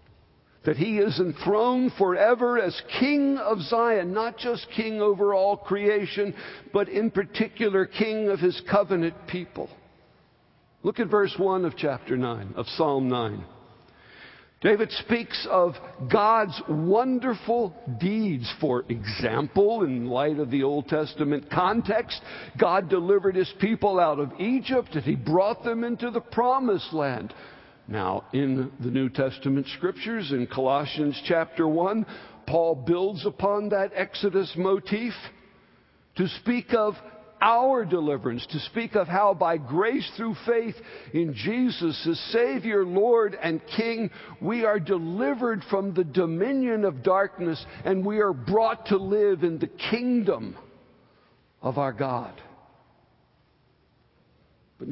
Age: 60-79